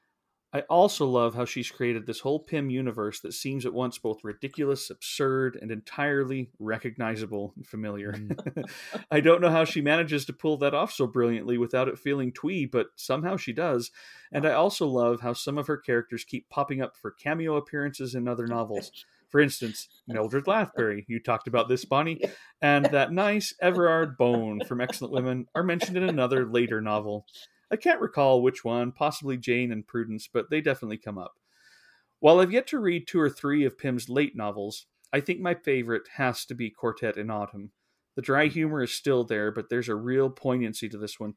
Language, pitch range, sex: English, 110-145 Hz, male